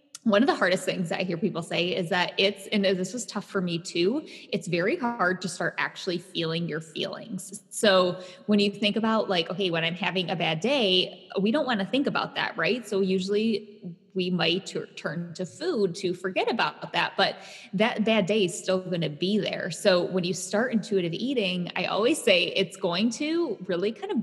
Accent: American